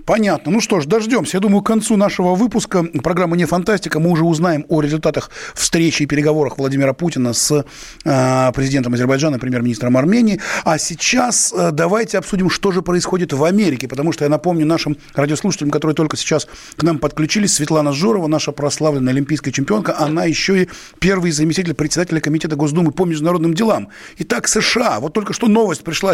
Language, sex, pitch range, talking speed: Russian, male, 135-170 Hz, 170 wpm